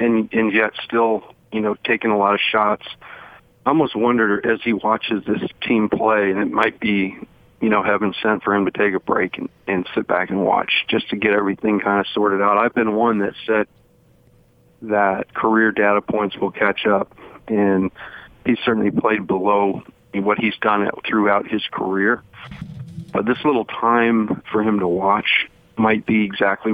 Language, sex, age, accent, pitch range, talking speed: English, male, 40-59, American, 100-115 Hz, 185 wpm